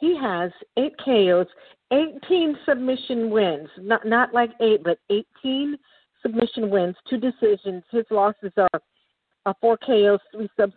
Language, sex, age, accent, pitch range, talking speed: English, female, 50-69, American, 195-255 Hz, 140 wpm